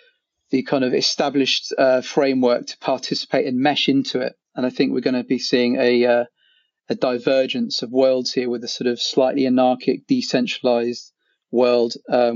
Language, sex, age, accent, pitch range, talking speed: English, male, 30-49, British, 120-140 Hz, 175 wpm